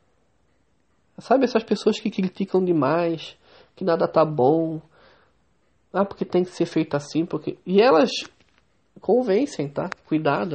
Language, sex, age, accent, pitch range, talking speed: Portuguese, male, 20-39, Brazilian, 145-165 Hz, 130 wpm